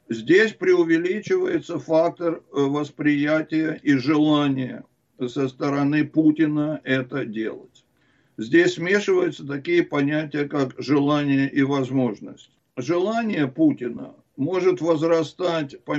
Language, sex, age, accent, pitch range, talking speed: Russian, male, 60-79, native, 140-165 Hz, 90 wpm